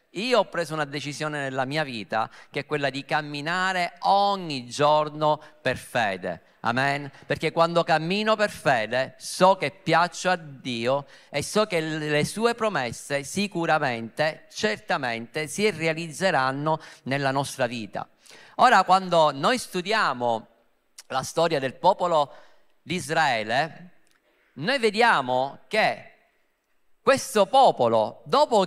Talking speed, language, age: 115 wpm, Italian, 50-69